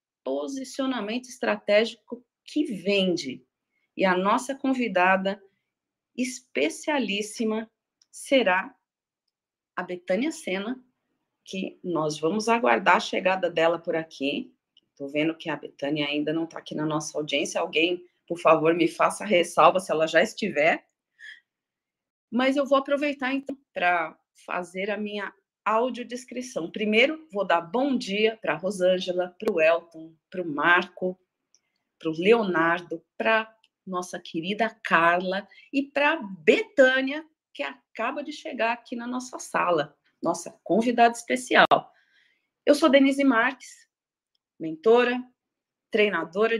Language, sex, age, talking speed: Portuguese, female, 40-59, 125 wpm